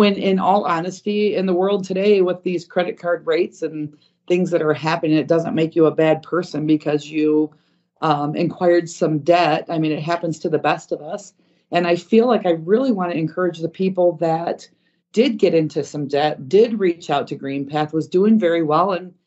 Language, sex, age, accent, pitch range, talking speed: English, female, 40-59, American, 150-180 Hz, 210 wpm